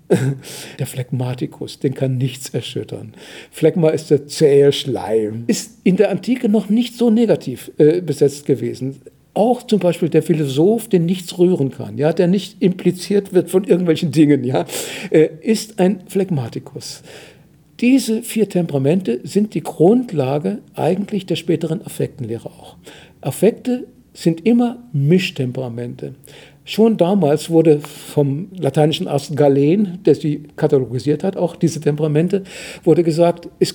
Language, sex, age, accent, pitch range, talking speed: German, male, 60-79, German, 145-195 Hz, 135 wpm